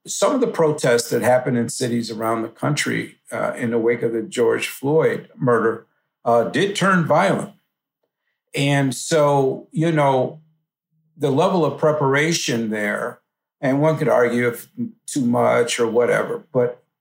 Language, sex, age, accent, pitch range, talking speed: English, male, 50-69, American, 125-165 Hz, 150 wpm